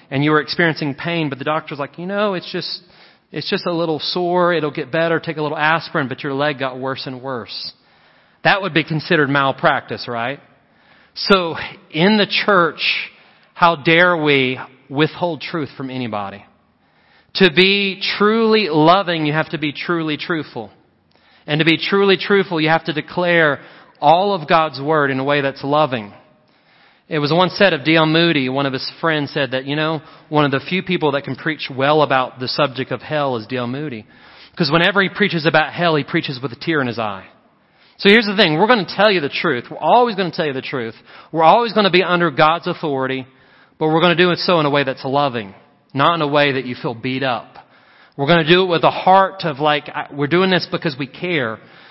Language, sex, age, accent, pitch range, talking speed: English, male, 40-59, American, 140-175 Hz, 215 wpm